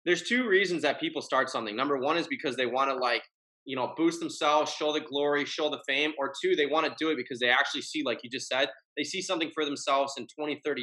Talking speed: 265 wpm